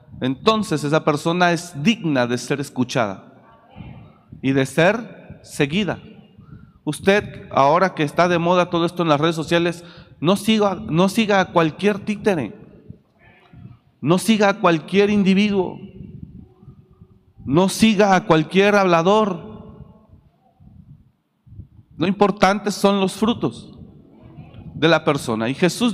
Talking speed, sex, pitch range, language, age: 120 wpm, male, 160-205 Hz, Spanish, 40-59